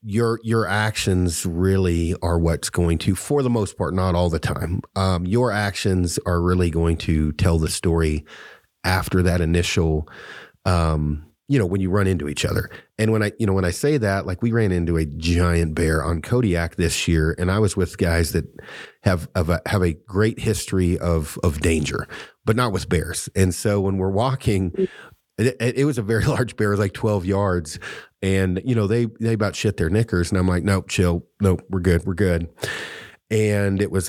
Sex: male